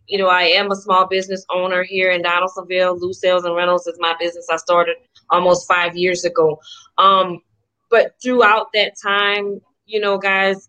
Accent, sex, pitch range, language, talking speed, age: American, female, 195-250 Hz, English, 180 wpm, 20-39